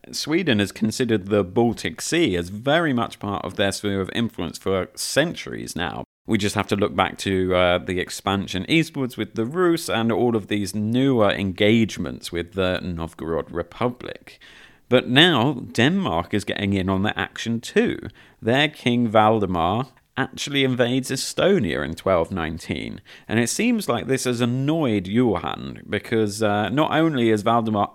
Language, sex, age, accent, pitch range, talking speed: English, male, 40-59, British, 100-125 Hz, 160 wpm